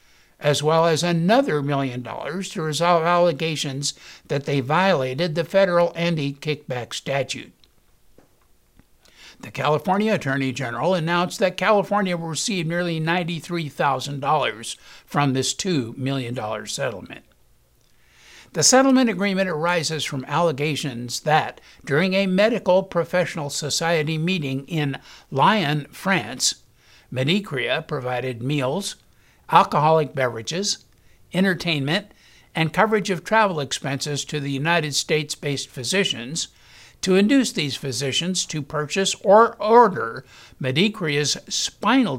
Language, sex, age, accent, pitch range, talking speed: English, male, 60-79, American, 135-185 Hz, 105 wpm